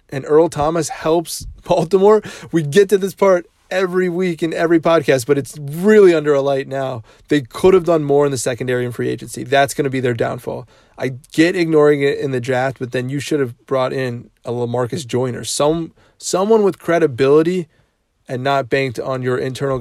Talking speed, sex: 195 wpm, male